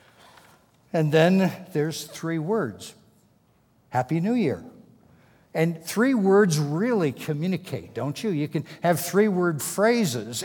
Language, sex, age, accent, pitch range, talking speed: English, male, 60-79, American, 135-175 Hz, 115 wpm